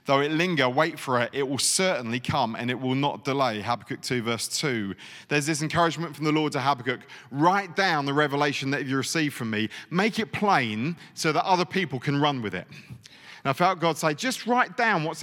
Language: English